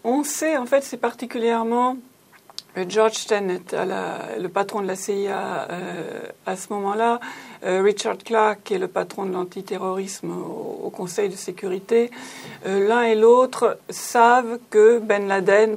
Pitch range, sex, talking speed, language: 190-230 Hz, female, 155 wpm, French